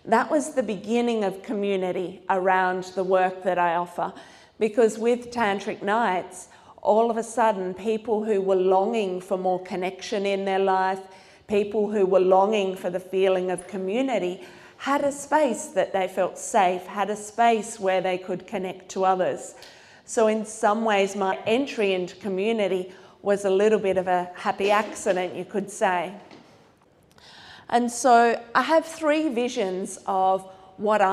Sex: female